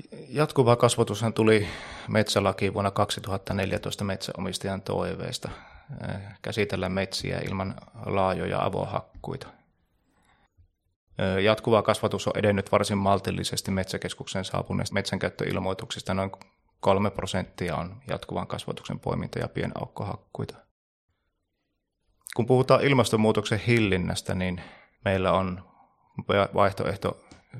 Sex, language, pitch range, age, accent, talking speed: male, Finnish, 95-110 Hz, 30-49, native, 85 wpm